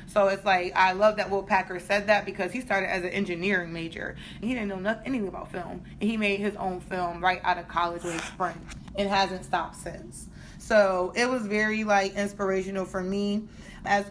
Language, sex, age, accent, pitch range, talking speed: English, female, 20-39, American, 185-210 Hz, 210 wpm